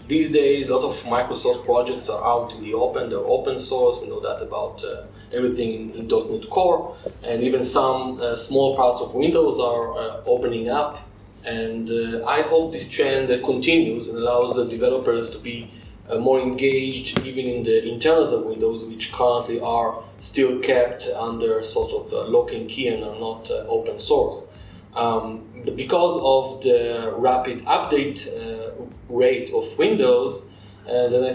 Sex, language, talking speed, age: male, Russian, 180 wpm, 20-39